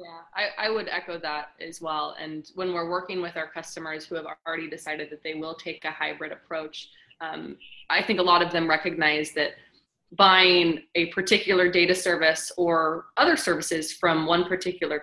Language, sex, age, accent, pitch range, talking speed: English, female, 20-39, American, 155-180 Hz, 185 wpm